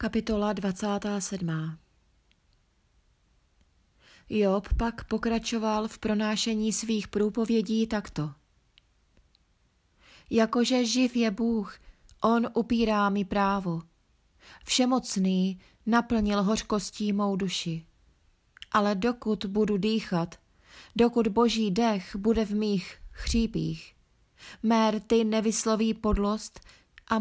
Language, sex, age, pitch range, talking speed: Czech, female, 30-49, 175-220 Hz, 85 wpm